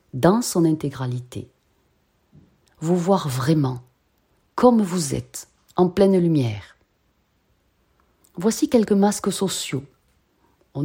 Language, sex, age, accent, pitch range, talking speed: French, female, 40-59, French, 135-190 Hz, 95 wpm